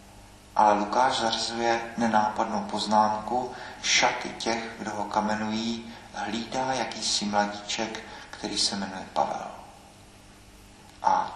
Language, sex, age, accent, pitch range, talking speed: Czech, male, 40-59, native, 105-115 Hz, 95 wpm